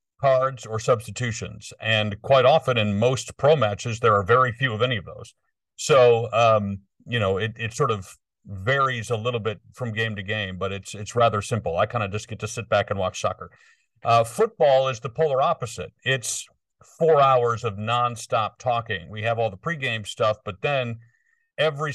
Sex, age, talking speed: male, 50-69, 195 wpm